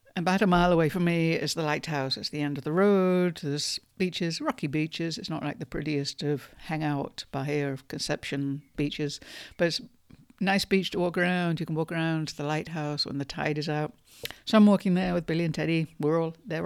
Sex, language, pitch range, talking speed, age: female, English, 150-175 Hz, 225 wpm, 60-79